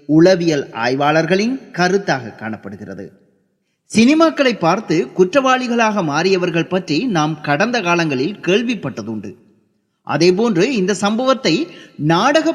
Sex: male